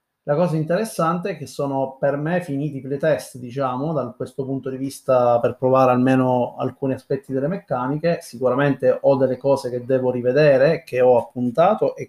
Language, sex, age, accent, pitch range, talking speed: Italian, male, 30-49, native, 130-145 Hz, 175 wpm